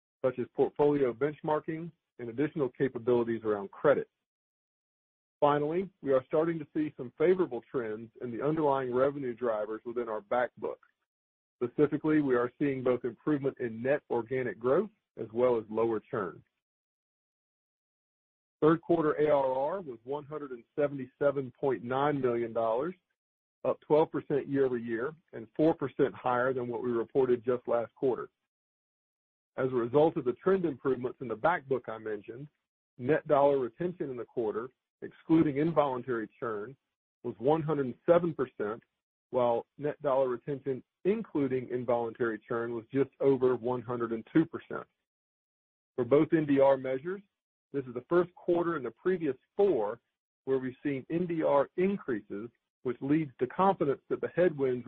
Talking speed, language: 135 wpm, English